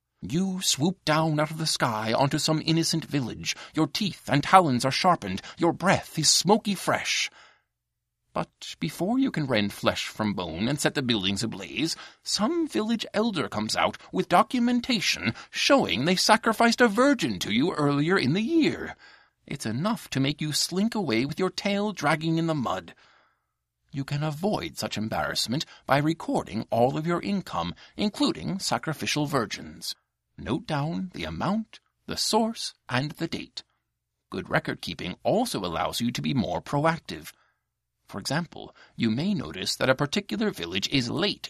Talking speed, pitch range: 160 wpm, 130-190 Hz